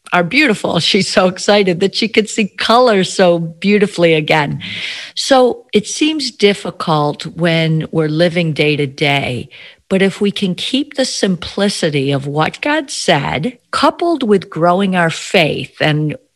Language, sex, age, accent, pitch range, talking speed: English, female, 50-69, American, 165-215 Hz, 145 wpm